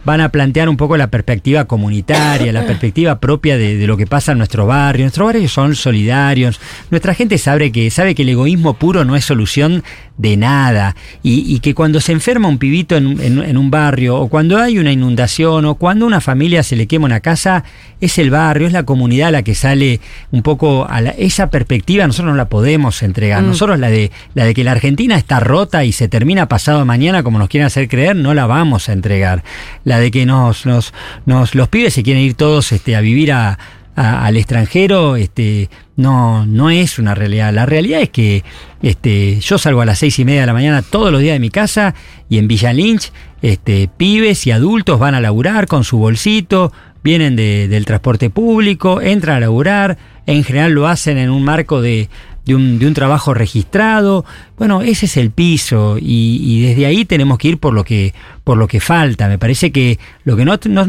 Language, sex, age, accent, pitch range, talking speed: Spanish, male, 40-59, Argentinian, 115-160 Hz, 205 wpm